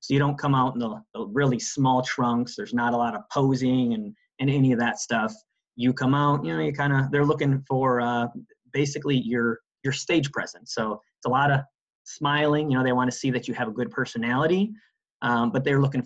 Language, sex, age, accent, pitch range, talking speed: English, male, 30-49, American, 120-145 Hz, 230 wpm